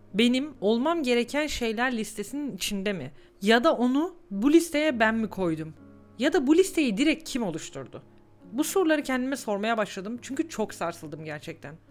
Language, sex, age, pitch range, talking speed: Turkish, female, 40-59, 200-275 Hz, 155 wpm